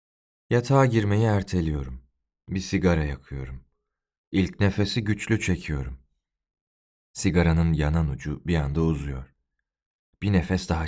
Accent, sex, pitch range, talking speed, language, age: native, male, 70-100 Hz, 105 wpm, Turkish, 40-59